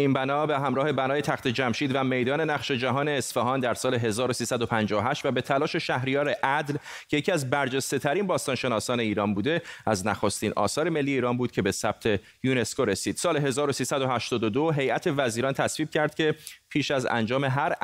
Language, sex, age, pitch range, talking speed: Persian, male, 30-49, 115-145 Hz, 165 wpm